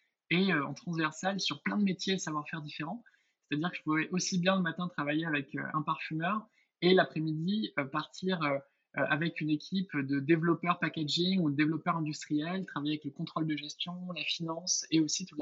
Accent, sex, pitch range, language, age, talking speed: French, male, 145-175 Hz, French, 20-39, 185 wpm